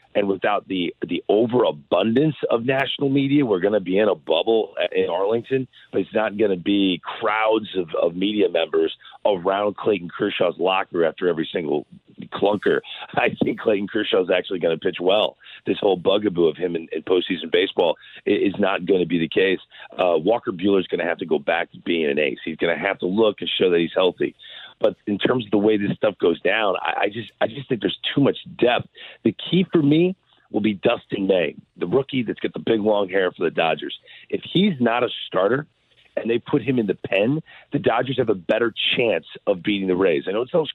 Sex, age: male, 40-59